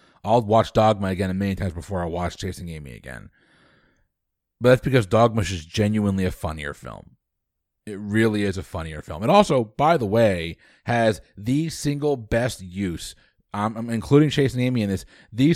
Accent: American